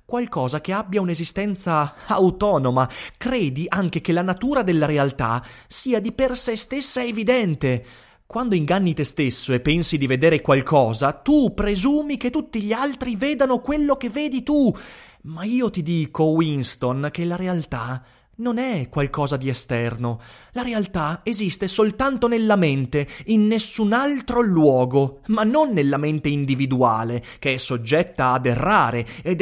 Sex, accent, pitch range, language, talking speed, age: male, native, 140-225 Hz, Italian, 145 wpm, 30-49